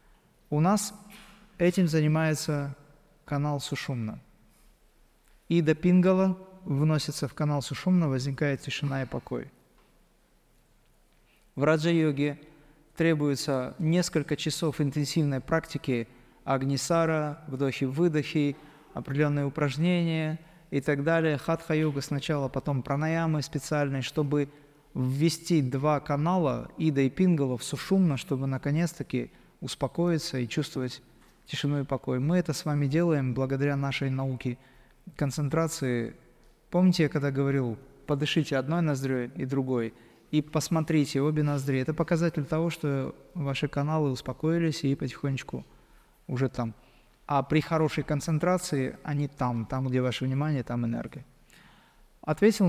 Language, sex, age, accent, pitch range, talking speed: Russian, male, 20-39, native, 135-160 Hz, 115 wpm